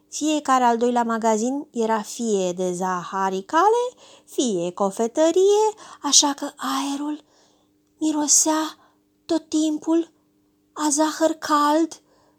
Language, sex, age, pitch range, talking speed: Romanian, female, 20-39, 210-330 Hz, 90 wpm